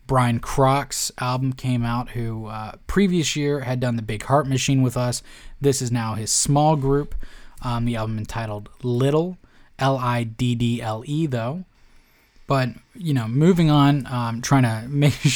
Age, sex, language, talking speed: 20-39, male, English, 170 wpm